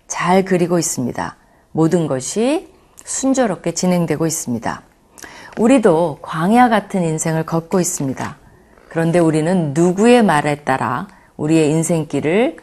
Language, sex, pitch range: Korean, female, 150-215 Hz